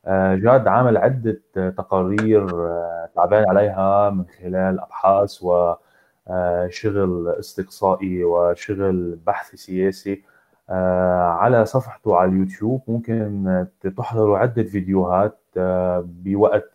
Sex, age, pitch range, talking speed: male, 20-39, 90-110 Hz, 80 wpm